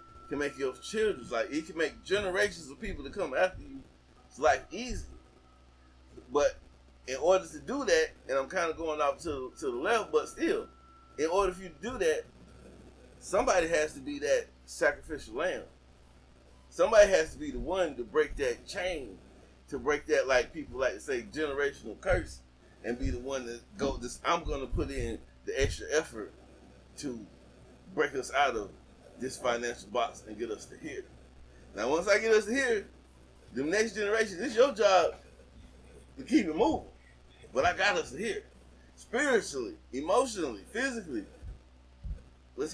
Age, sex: 30-49, male